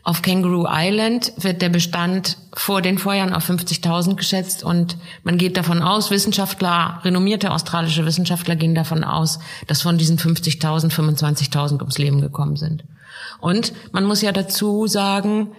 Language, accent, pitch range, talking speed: German, German, 160-185 Hz, 150 wpm